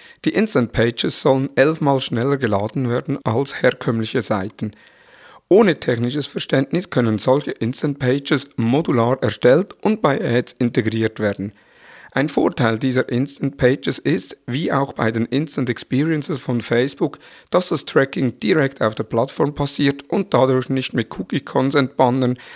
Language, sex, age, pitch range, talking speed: German, male, 50-69, 115-140 Hz, 145 wpm